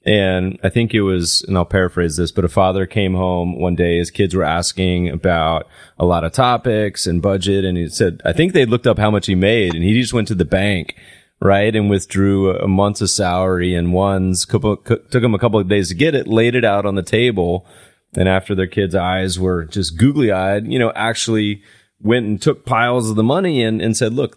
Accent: American